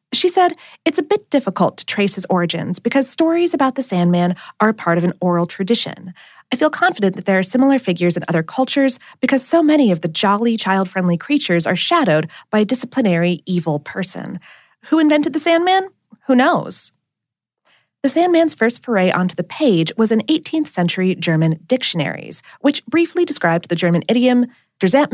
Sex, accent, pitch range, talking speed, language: female, American, 180-280 Hz, 175 wpm, English